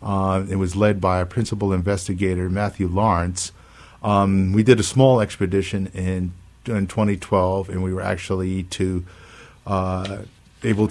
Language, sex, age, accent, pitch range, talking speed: English, male, 50-69, American, 95-110 Hz, 140 wpm